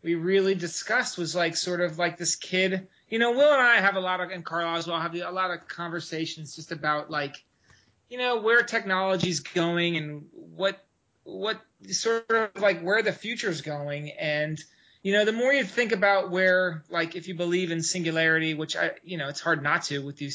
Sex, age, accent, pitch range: male, 30-49, American, 155-195 Hz